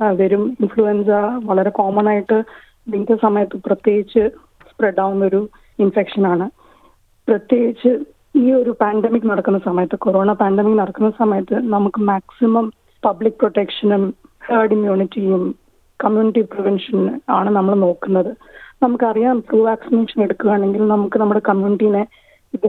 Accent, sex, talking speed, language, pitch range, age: native, female, 110 wpm, Malayalam, 205-240 Hz, 20-39